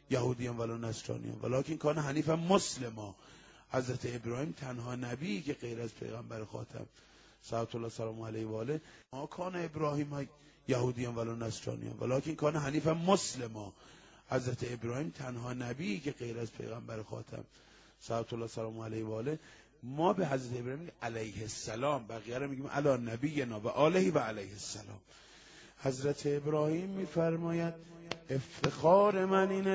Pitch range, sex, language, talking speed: 125-170 Hz, male, Persian, 145 wpm